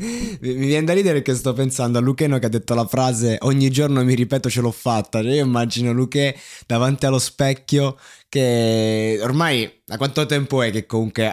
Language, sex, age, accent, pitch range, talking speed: Italian, male, 20-39, native, 110-150 Hz, 185 wpm